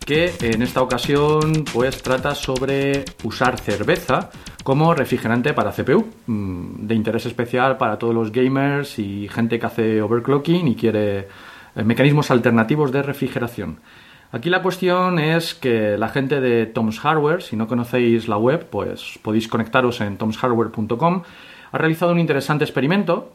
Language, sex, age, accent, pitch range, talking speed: Spanish, male, 40-59, Spanish, 120-160 Hz, 140 wpm